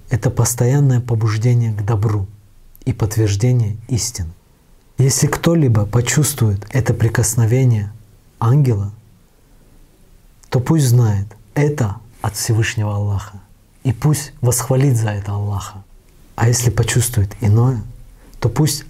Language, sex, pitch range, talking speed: Russian, male, 100-120 Hz, 110 wpm